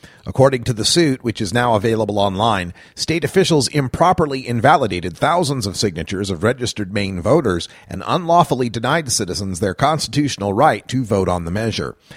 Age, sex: 40-59, male